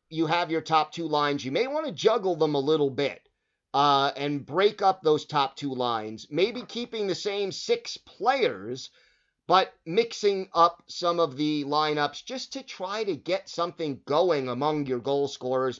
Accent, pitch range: American, 145-180 Hz